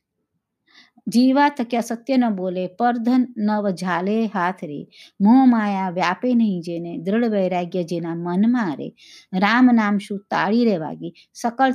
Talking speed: 110 wpm